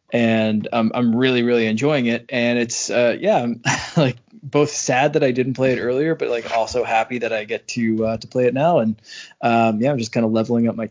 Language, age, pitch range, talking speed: English, 20-39, 110-145 Hz, 240 wpm